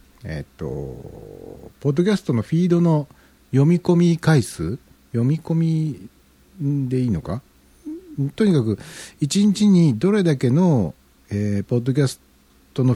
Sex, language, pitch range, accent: male, Japanese, 100-160 Hz, native